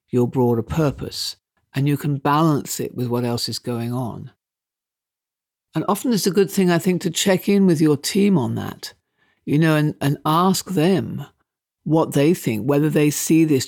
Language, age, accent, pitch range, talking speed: English, 60-79, British, 130-160 Hz, 190 wpm